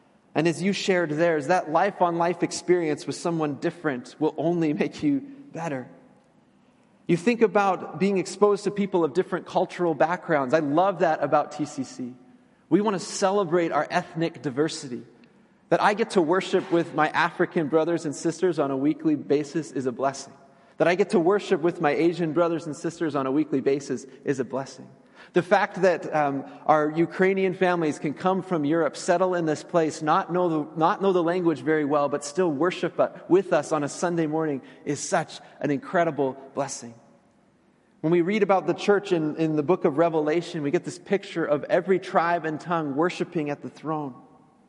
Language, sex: English, male